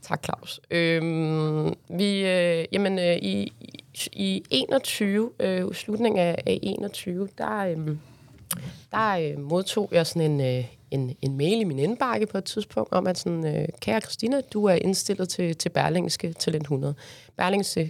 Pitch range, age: 150-195 Hz, 30-49